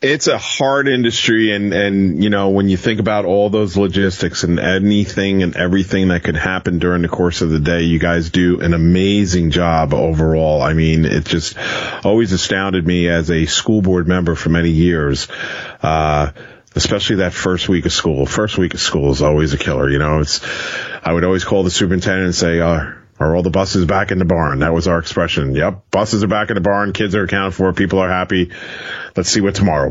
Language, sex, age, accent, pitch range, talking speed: English, male, 40-59, American, 85-105 Hz, 215 wpm